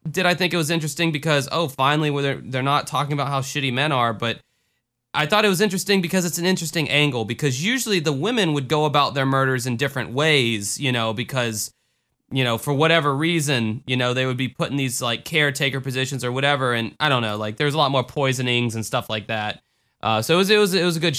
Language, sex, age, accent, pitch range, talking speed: English, male, 20-39, American, 115-150 Hz, 245 wpm